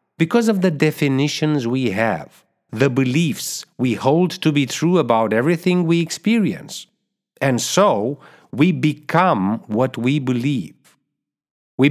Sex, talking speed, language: male, 125 wpm, English